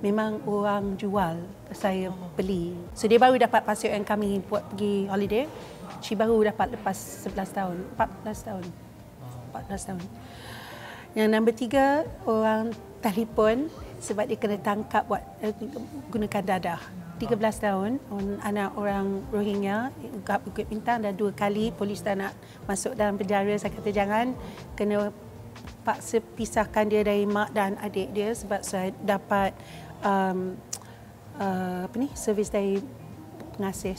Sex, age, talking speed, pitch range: female, 40-59, 135 wpm, 190-220 Hz